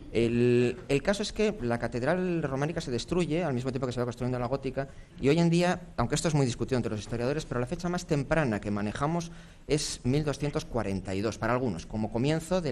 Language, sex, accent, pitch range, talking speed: English, male, Spanish, 100-145 Hz, 210 wpm